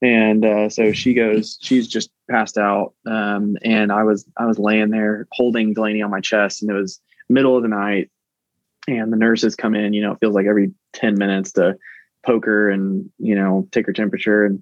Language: English